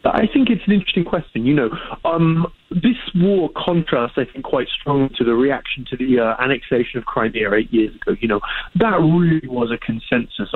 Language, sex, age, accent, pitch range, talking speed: English, male, 20-39, British, 115-165 Hz, 205 wpm